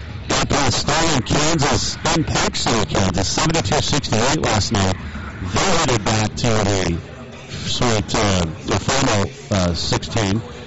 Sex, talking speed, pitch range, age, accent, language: male, 120 wpm, 95-125 Hz, 50-69, American, English